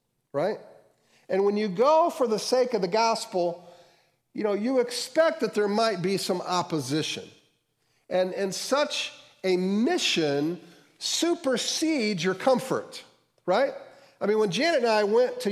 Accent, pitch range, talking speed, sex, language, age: American, 155-210 Hz, 145 wpm, male, English, 50-69